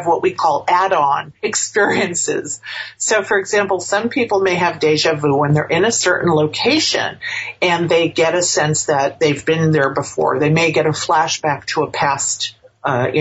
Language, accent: English, American